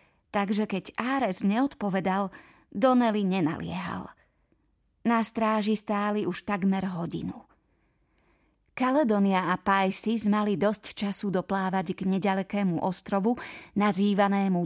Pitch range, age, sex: 195-230 Hz, 30-49, female